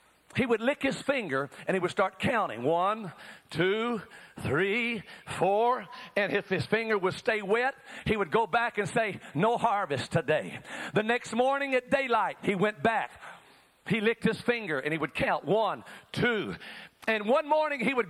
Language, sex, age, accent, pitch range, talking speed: English, male, 50-69, American, 205-250 Hz, 175 wpm